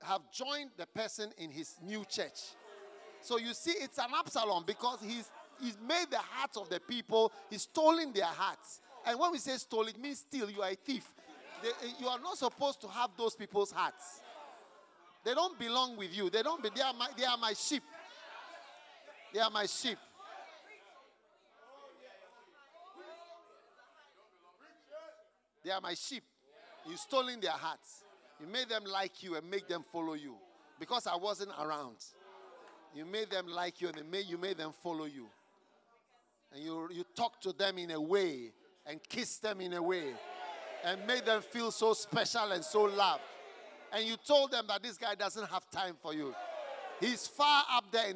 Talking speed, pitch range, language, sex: 180 wpm, 190-260 Hz, English, male